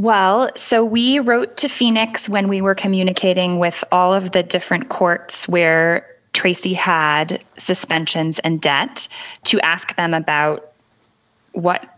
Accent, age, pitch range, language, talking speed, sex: American, 10-29, 165-195 Hz, English, 135 wpm, female